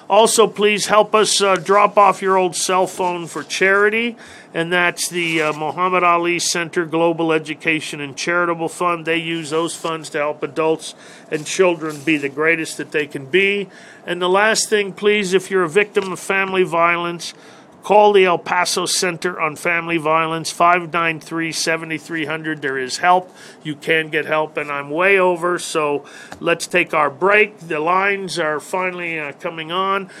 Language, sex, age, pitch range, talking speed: English, male, 40-59, 160-200 Hz, 170 wpm